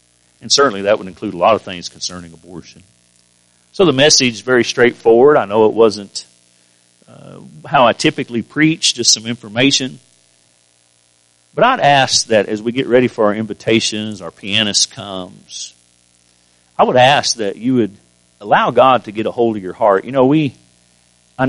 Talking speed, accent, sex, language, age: 175 wpm, American, male, English, 50-69